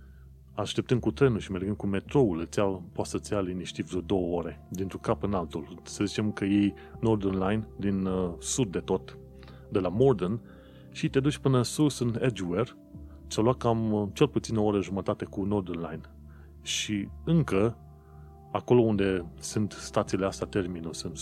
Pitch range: 80-110 Hz